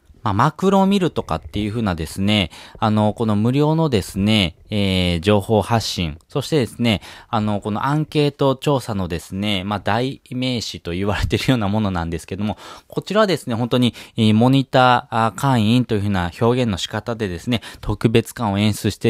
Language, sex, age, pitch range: Japanese, male, 20-39, 100-130 Hz